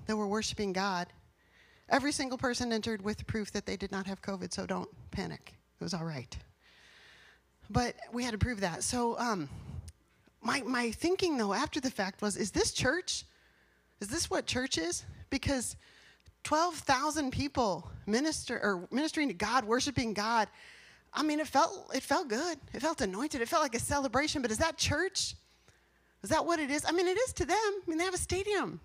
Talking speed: 195 wpm